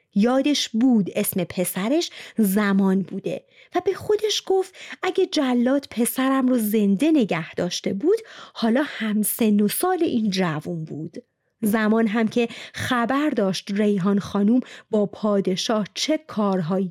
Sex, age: female, 30-49